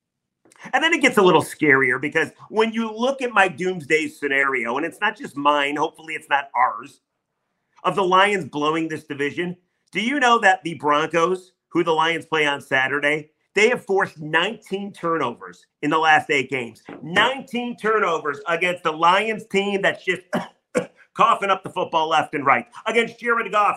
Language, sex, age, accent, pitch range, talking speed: English, male, 40-59, American, 150-210 Hz, 175 wpm